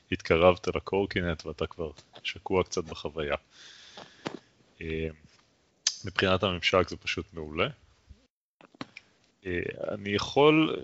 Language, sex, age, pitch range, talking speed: Hebrew, male, 30-49, 85-110 Hz, 80 wpm